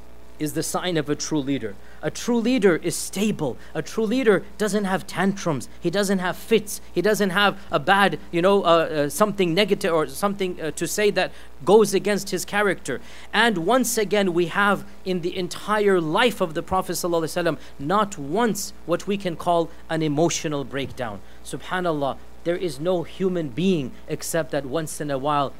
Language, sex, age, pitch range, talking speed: English, male, 40-59, 155-200 Hz, 180 wpm